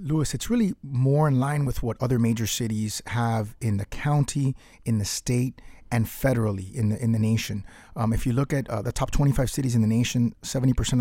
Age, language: 30-49, English